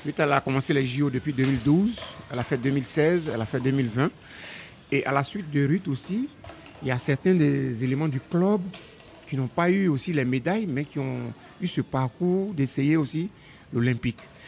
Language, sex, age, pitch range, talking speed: French, male, 60-79, 130-160 Hz, 190 wpm